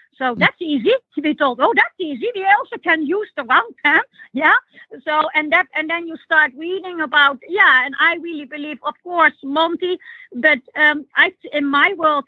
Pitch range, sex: 245-315 Hz, female